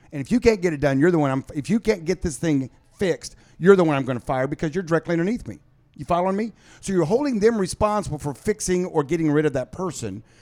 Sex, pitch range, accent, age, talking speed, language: male, 140-180 Hz, American, 50-69, 265 wpm, English